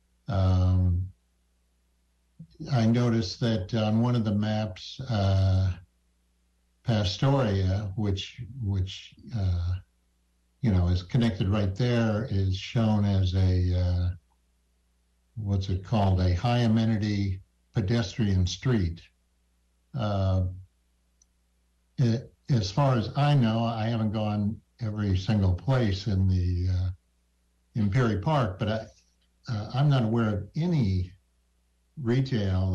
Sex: male